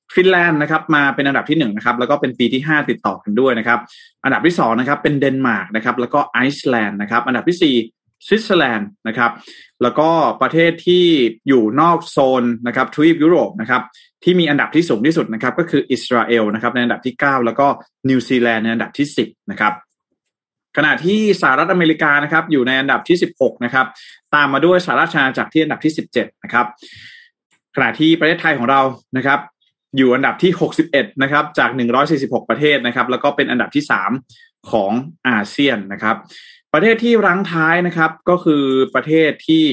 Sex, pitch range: male, 120-160 Hz